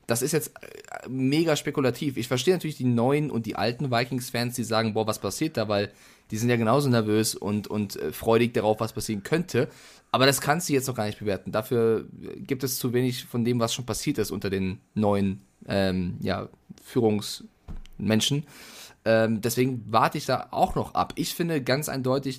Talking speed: 195 wpm